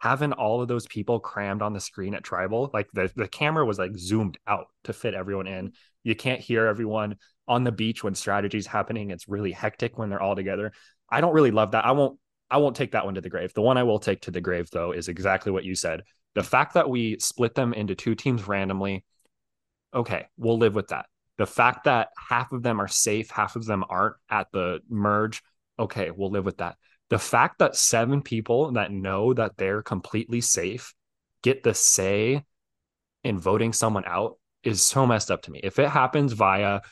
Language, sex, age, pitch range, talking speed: English, male, 20-39, 100-115 Hz, 215 wpm